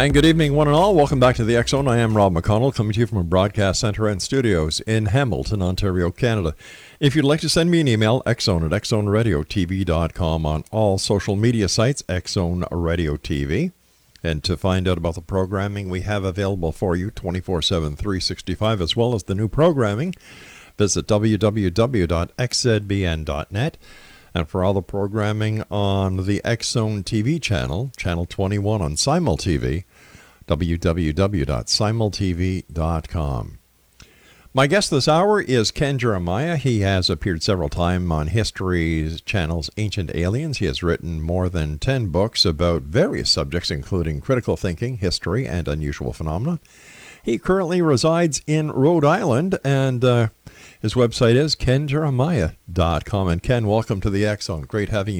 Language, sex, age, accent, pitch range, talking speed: English, male, 50-69, American, 85-120 Hz, 155 wpm